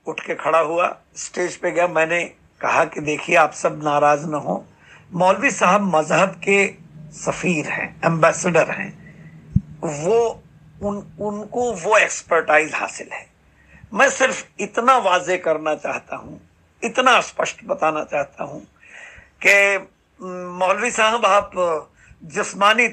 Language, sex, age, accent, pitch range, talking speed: Hindi, male, 60-79, native, 160-200 Hz, 105 wpm